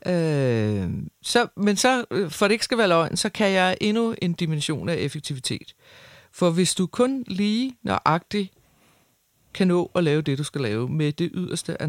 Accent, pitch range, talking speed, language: native, 140-180 Hz, 180 wpm, Danish